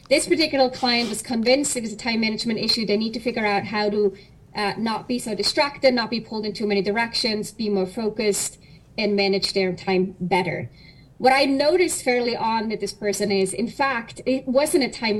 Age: 30-49